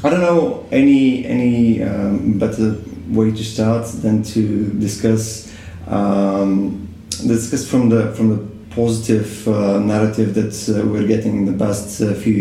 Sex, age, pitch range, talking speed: male, 30-49, 100-125 Hz, 150 wpm